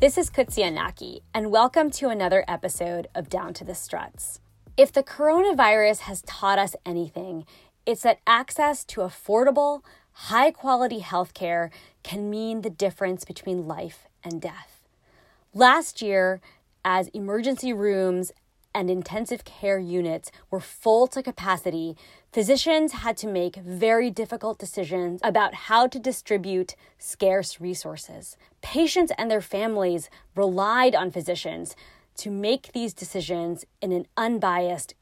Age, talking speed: 20-39, 130 wpm